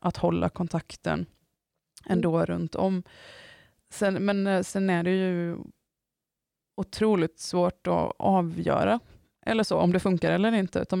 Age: 20-39